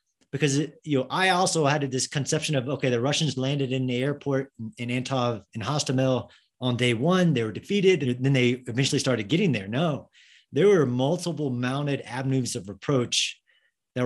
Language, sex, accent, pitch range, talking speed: English, male, American, 125-160 Hz, 180 wpm